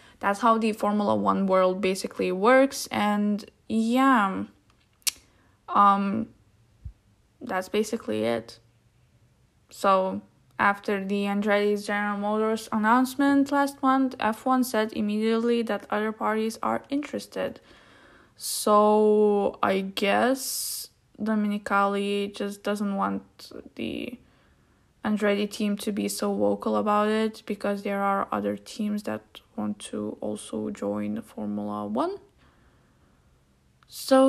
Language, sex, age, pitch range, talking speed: English, female, 10-29, 200-235 Hz, 105 wpm